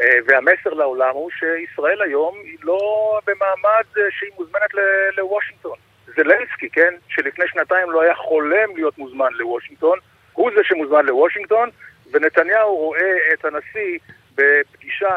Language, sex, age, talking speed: Hebrew, male, 50-69, 125 wpm